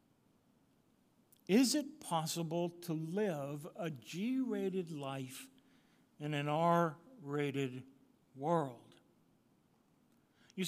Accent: American